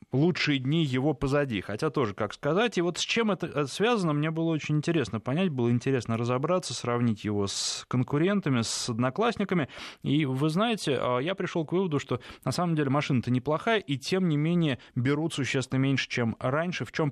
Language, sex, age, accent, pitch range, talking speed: Russian, male, 20-39, native, 115-155 Hz, 180 wpm